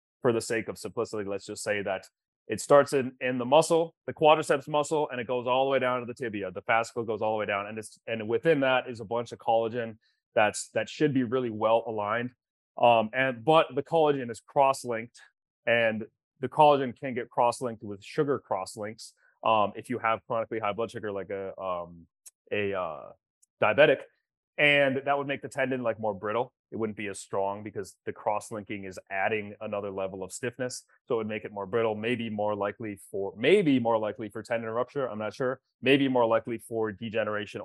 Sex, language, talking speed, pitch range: male, English, 205 wpm, 110-135 Hz